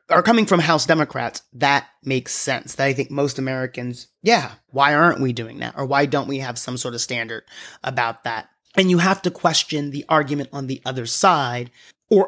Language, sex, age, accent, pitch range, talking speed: English, male, 30-49, American, 135-175 Hz, 205 wpm